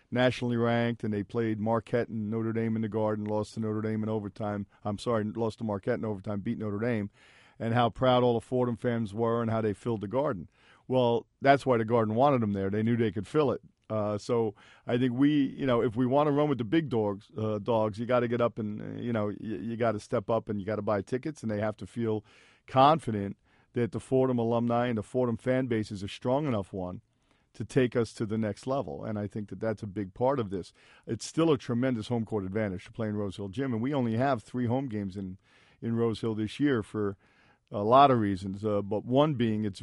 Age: 50-69